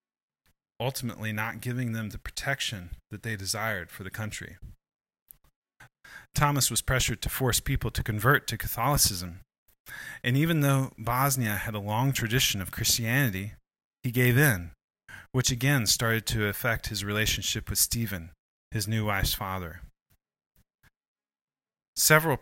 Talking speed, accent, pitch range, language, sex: 130 wpm, American, 100-125 Hz, English, male